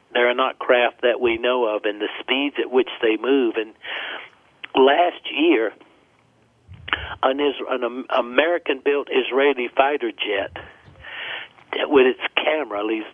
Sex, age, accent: male, 60-79, American